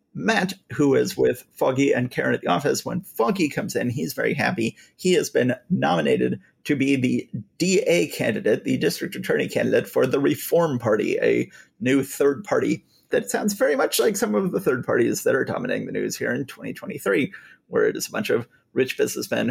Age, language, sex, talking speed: 30-49, English, male, 195 wpm